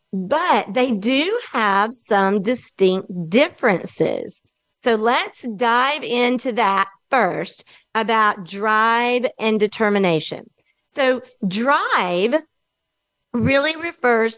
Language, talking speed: English, 90 wpm